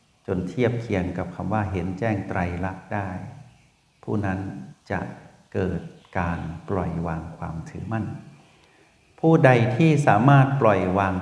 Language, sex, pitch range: Thai, male, 95-120 Hz